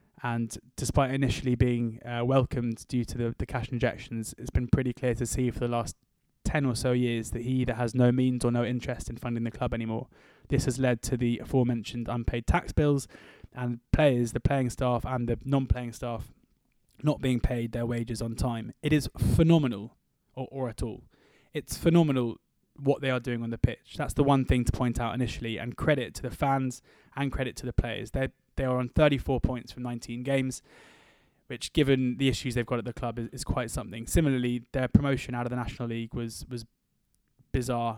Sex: male